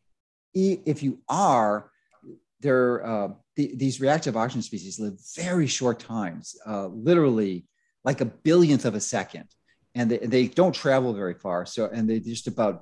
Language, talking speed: English, 155 wpm